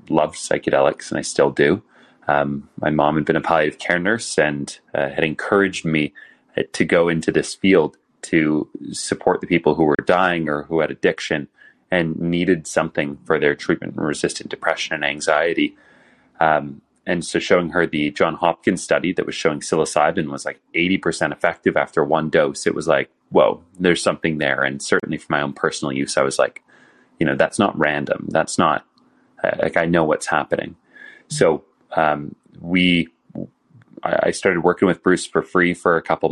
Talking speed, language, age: 180 wpm, English, 30-49